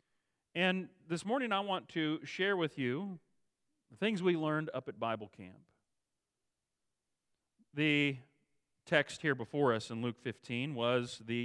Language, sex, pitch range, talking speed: English, male, 115-145 Hz, 140 wpm